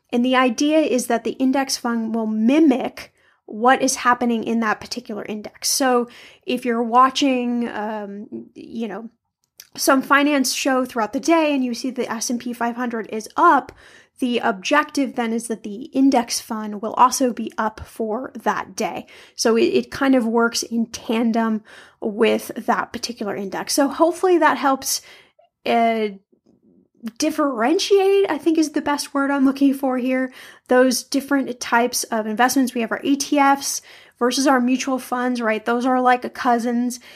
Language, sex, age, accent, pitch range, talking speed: English, female, 10-29, American, 230-275 Hz, 165 wpm